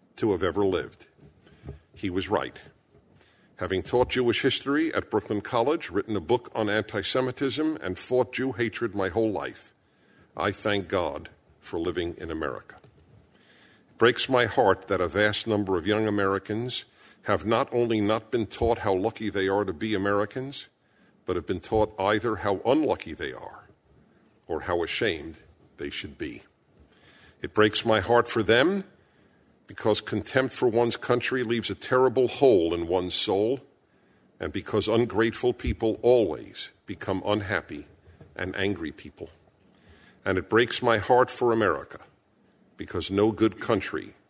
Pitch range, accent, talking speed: 100-120 Hz, American, 150 wpm